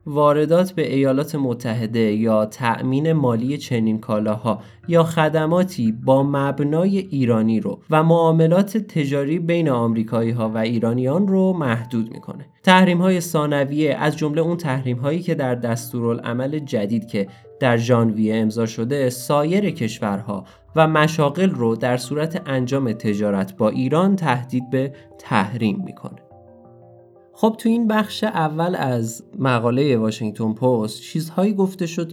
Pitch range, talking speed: 105-150 Hz, 130 wpm